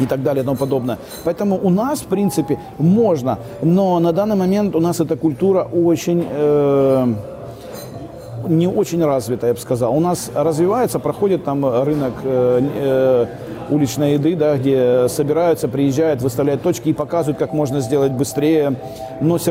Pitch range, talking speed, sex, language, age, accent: 125-155 Hz, 150 wpm, male, Ukrainian, 40-59, native